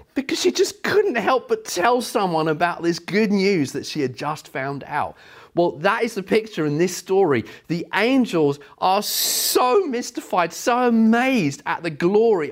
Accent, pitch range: British, 135-195 Hz